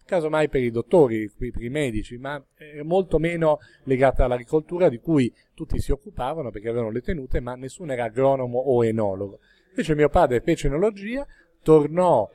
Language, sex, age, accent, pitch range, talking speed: Italian, male, 40-59, native, 115-150 Hz, 160 wpm